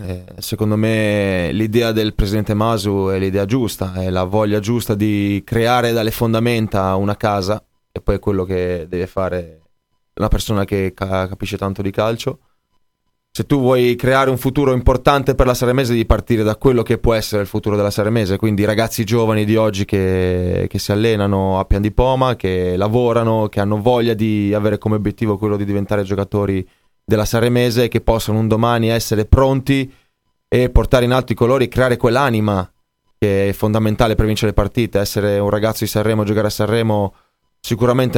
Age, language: 20-39, Italian